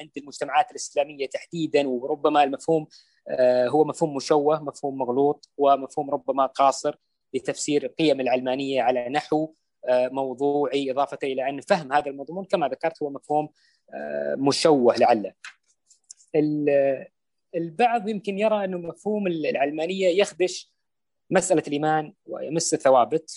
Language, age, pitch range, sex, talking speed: Arabic, 20-39, 130-155 Hz, female, 110 wpm